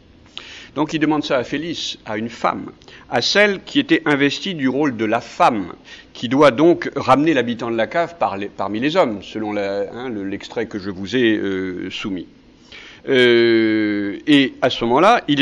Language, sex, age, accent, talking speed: French, male, 60-79, French, 185 wpm